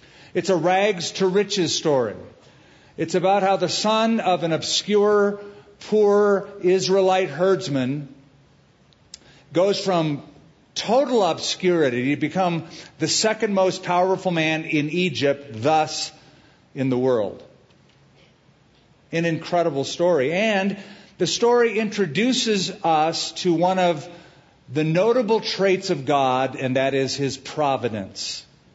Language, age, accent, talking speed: English, 50-69, American, 110 wpm